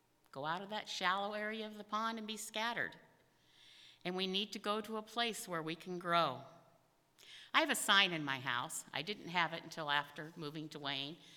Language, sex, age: English, female, 50-69